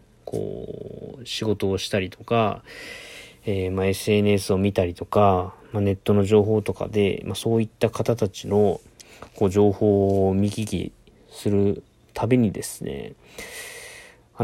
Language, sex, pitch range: Japanese, male, 100-125 Hz